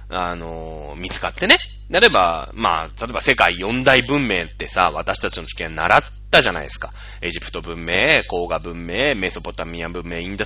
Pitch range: 90-145 Hz